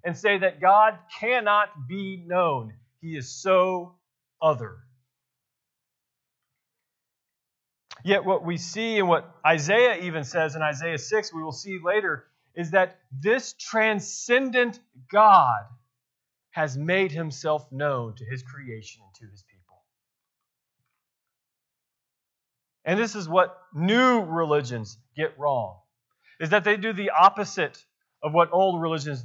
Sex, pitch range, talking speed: male, 130-195 Hz, 125 wpm